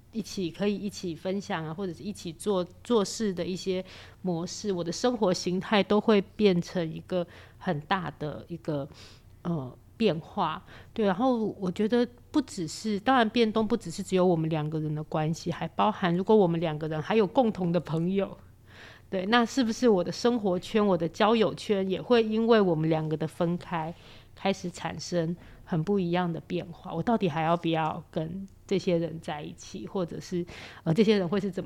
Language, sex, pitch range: Chinese, female, 165-205 Hz